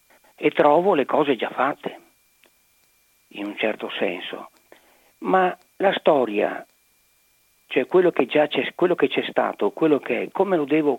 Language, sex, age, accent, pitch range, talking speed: Italian, male, 50-69, native, 145-185 Hz, 155 wpm